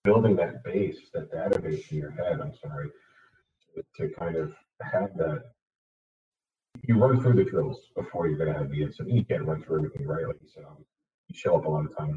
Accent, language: American, English